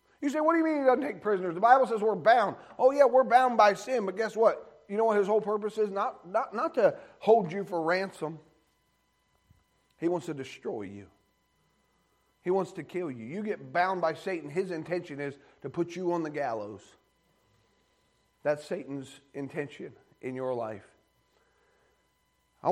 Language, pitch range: English, 140-185 Hz